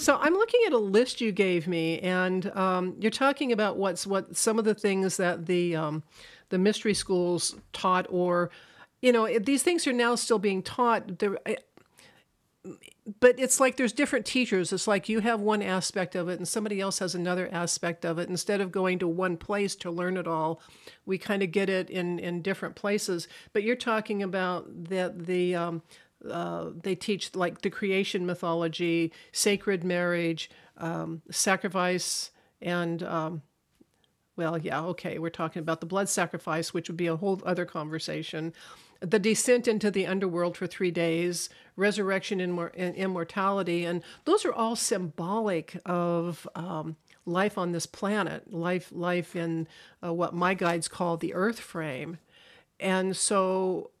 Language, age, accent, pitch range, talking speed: English, 50-69, American, 175-205 Hz, 170 wpm